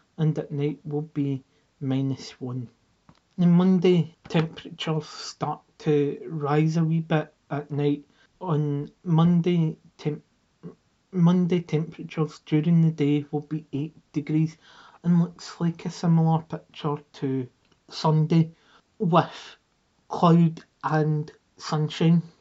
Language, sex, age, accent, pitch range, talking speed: English, male, 30-49, British, 150-170 Hz, 105 wpm